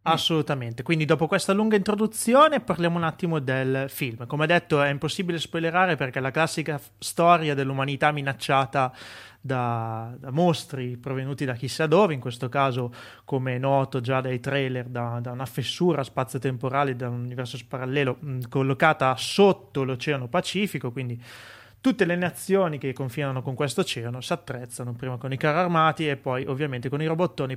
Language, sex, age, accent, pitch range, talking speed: Italian, male, 30-49, native, 130-160 Hz, 165 wpm